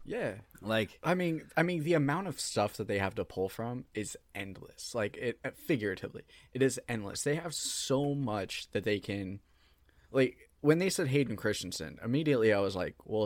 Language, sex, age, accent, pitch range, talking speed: English, male, 20-39, American, 100-120 Hz, 190 wpm